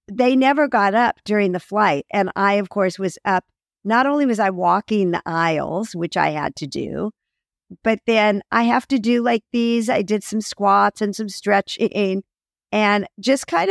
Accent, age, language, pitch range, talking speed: American, 50-69, English, 190-240 Hz, 190 wpm